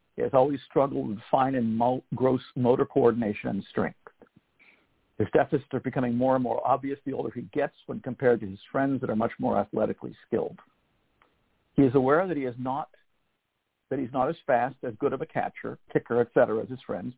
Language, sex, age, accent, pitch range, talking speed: English, male, 60-79, American, 120-145 Hz, 205 wpm